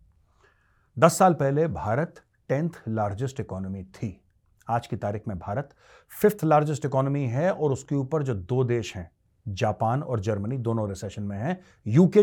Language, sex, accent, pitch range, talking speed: Hindi, male, native, 105-160 Hz, 155 wpm